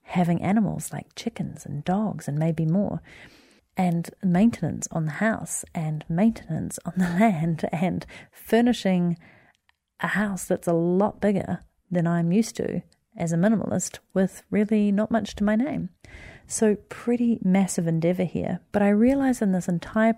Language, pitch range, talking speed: English, 165-210 Hz, 155 wpm